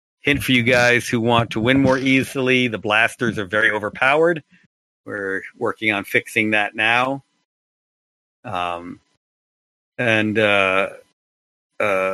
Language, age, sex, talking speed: English, 50-69, male, 125 wpm